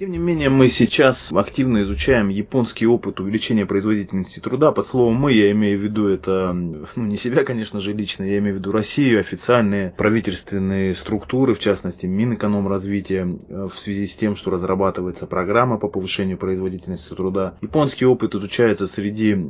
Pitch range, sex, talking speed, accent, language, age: 95-105 Hz, male, 160 wpm, native, Russian, 20-39